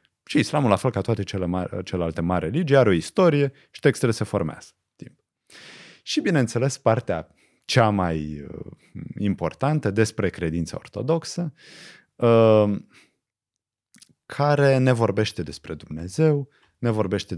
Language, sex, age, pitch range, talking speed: Romanian, male, 30-49, 90-135 Hz, 115 wpm